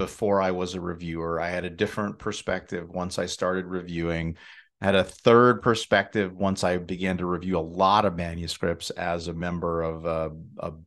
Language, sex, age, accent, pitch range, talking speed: English, male, 40-59, American, 85-100 Hz, 190 wpm